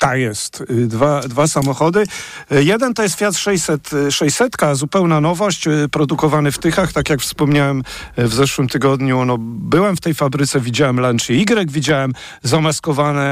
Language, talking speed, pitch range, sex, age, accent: Polish, 145 wpm, 135-165 Hz, male, 50-69, native